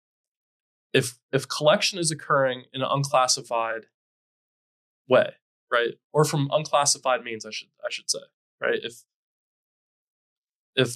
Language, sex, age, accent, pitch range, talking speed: English, male, 20-39, American, 120-145 Hz, 120 wpm